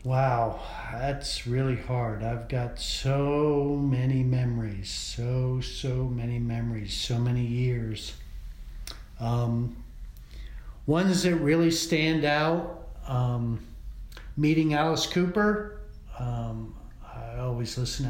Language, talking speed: English, 100 wpm